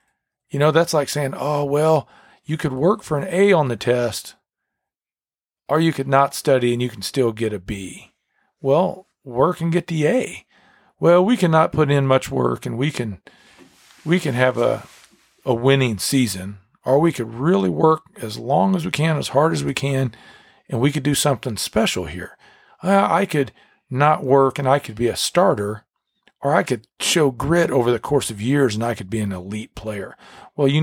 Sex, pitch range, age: male, 115-150 Hz, 40-59